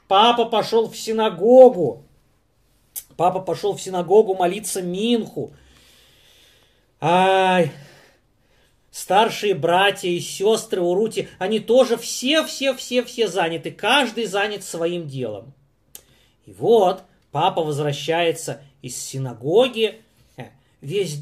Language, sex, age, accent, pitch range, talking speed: Russian, male, 30-49, native, 145-220 Hz, 95 wpm